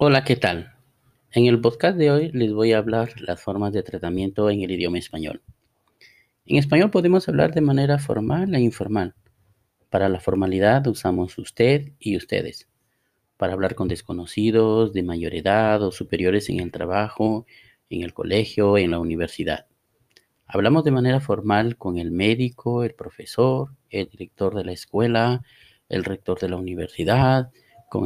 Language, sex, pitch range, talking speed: Spanish, male, 95-125 Hz, 160 wpm